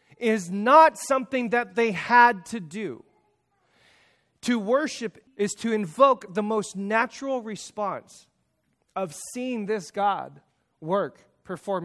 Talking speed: 115 wpm